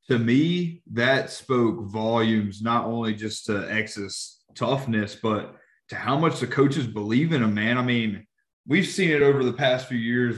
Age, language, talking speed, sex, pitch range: 20-39, English, 180 wpm, male, 110-135 Hz